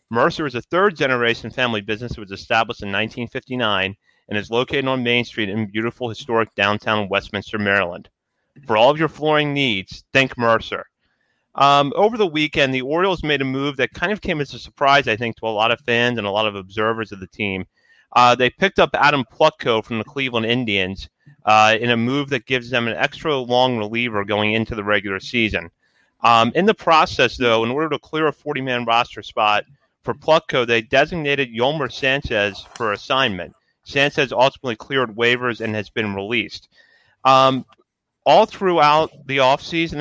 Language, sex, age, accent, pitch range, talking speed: English, male, 30-49, American, 110-140 Hz, 180 wpm